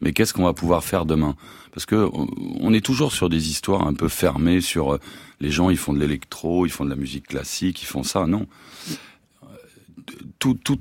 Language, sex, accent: French, male, French